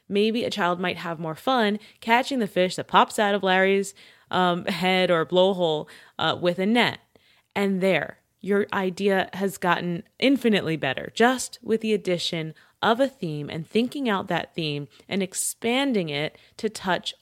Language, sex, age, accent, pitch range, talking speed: English, female, 20-39, American, 160-215 Hz, 165 wpm